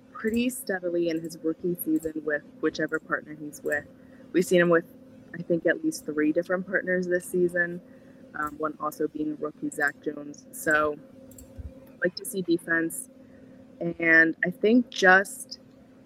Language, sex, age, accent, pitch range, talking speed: English, female, 20-39, American, 155-250 Hz, 155 wpm